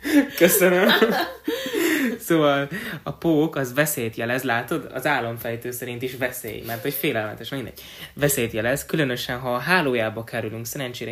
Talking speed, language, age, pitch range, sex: 135 wpm, Hungarian, 20-39, 120-145 Hz, male